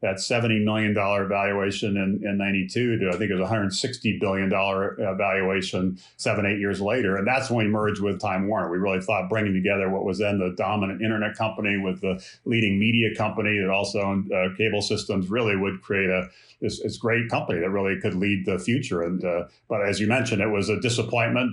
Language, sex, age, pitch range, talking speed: English, male, 40-59, 95-110 Hz, 205 wpm